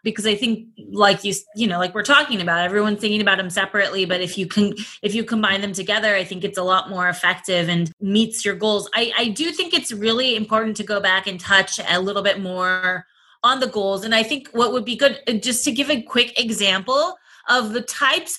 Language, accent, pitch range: English, American, 195-235 Hz